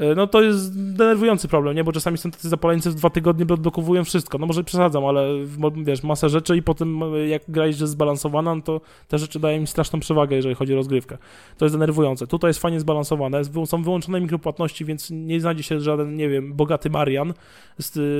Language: Polish